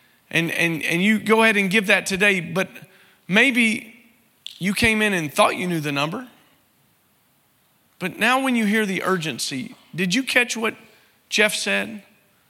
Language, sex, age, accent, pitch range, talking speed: English, male, 40-59, American, 185-225 Hz, 165 wpm